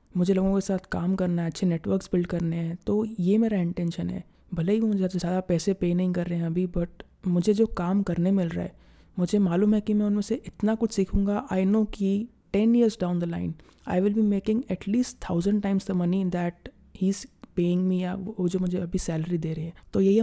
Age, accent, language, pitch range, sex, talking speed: 20-39, native, Hindi, 175-195 Hz, female, 230 wpm